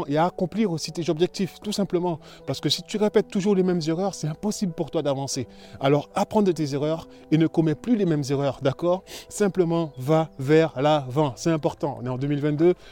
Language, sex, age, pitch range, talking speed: French, male, 20-39, 150-175 Hz, 210 wpm